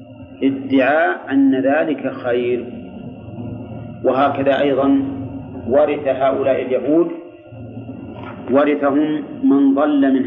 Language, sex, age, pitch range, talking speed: Arabic, male, 40-59, 120-150 Hz, 75 wpm